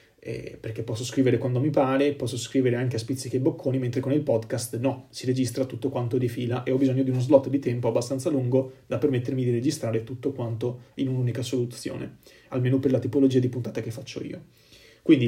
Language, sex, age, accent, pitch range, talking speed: Italian, male, 30-49, native, 125-150 Hz, 210 wpm